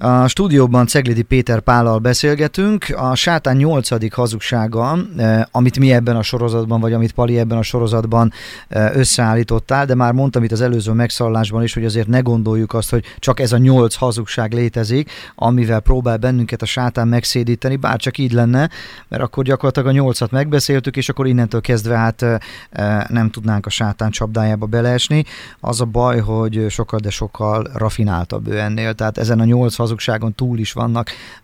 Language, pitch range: Hungarian, 110-125 Hz